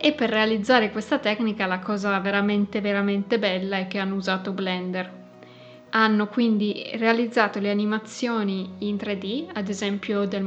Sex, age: female, 20-39